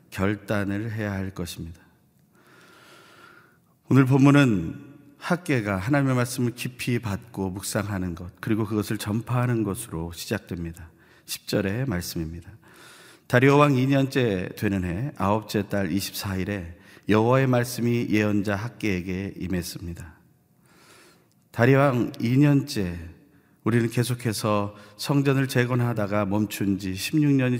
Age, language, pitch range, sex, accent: 40-59, Korean, 95-125 Hz, male, native